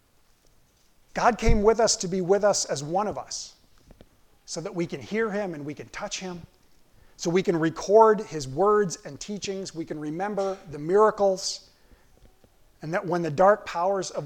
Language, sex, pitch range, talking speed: English, male, 150-200 Hz, 180 wpm